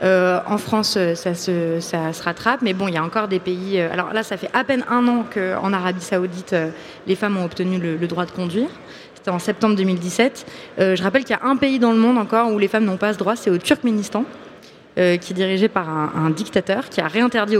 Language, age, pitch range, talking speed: French, 30-49, 185-230 Hz, 250 wpm